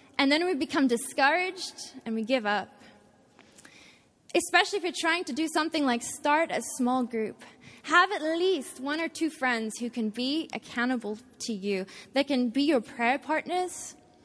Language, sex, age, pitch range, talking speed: English, female, 20-39, 250-335 Hz, 170 wpm